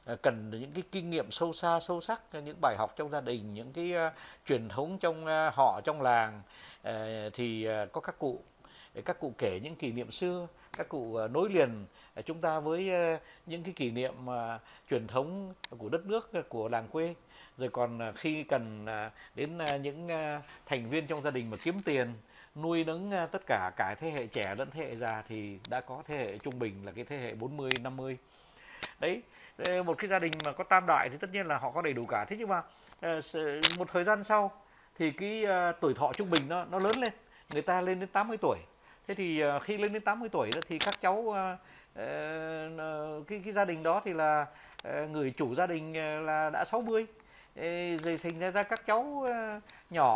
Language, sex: Vietnamese, male